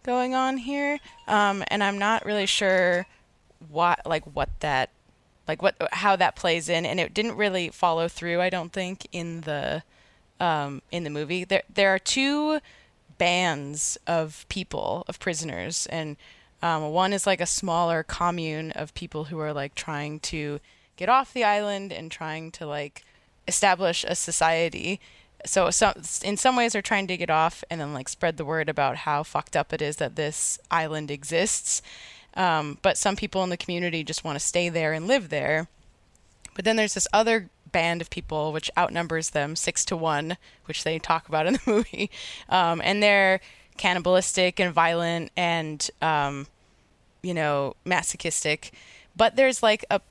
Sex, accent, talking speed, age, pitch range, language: female, American, 175 wpm, 20-39, 155-200 Hz, English